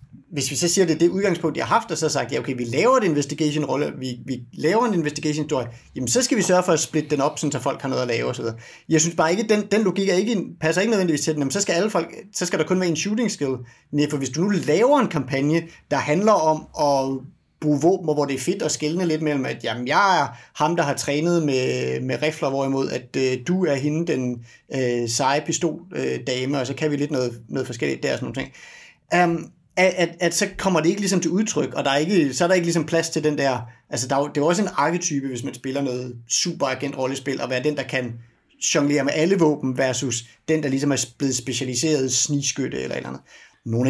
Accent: native